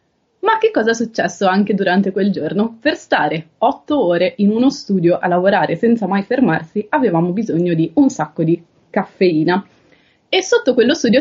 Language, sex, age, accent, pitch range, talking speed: Italian, female, 20-39, native, 180-235 Hz, 170 wpm